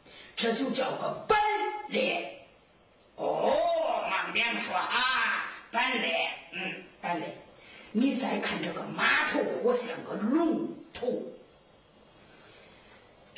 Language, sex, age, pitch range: Chinese, female, 50-69, 250-340 Hz